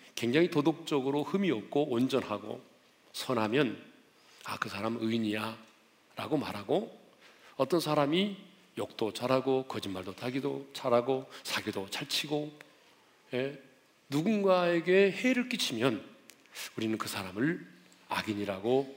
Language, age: Korean, 40-59